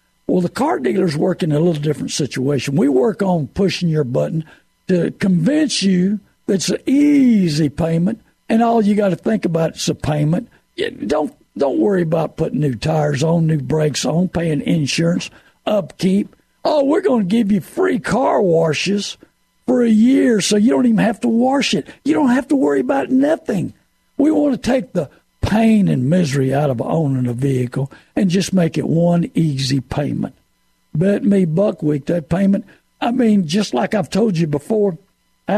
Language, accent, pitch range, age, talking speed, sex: English, American, 160-220 Hz, 60-79, 185 wpm, male